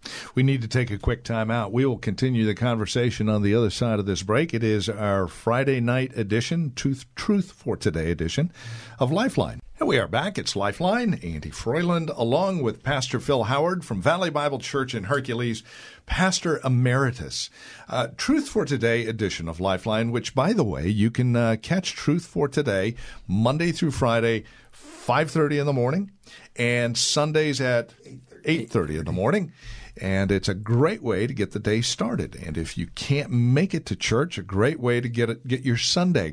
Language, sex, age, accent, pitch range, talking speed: English, male, 50-69, American, 105-140 Hz, 185 wpm